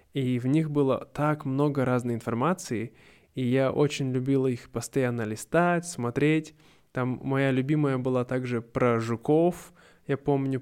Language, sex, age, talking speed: Russian, male, 20-39, 140 wpm